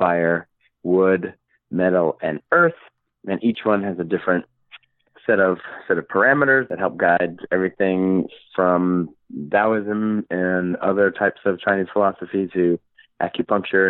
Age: 30-49